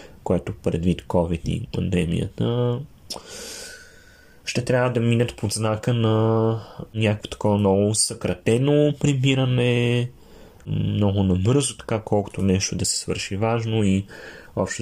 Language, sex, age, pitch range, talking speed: Bulgarian, male, 30-49, 100-130 Hz, 115 wpm